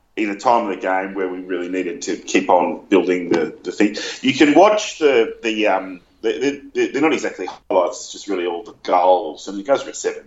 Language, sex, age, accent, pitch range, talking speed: English, male, 30-49, Australian, 95-115 Hz, 245 wpm